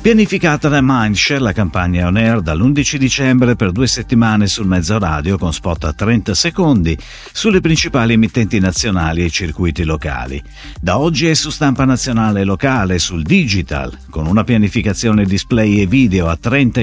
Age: 50-69